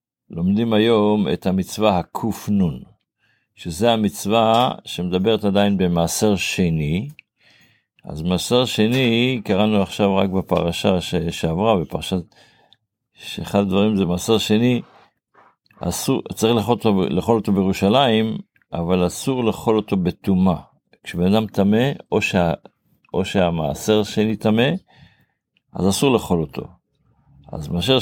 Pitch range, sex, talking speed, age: 95-115 Hz, male, 110 wpm, 50-69